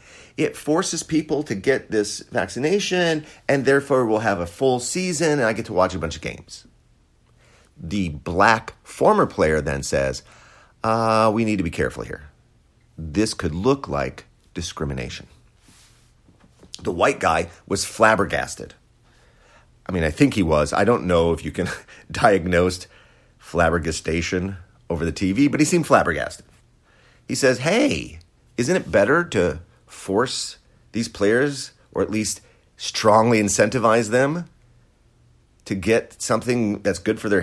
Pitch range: 85-125 Hz